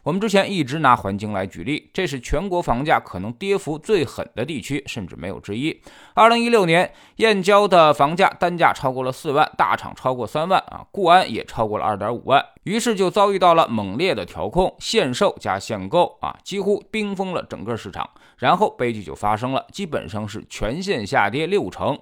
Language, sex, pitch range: Chinese, male, 120-195 Hz